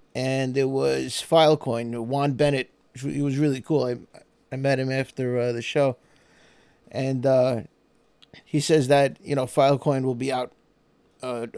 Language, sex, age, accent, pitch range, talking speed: English, male, 30-49, American, 135-175 Hz, 155 wpm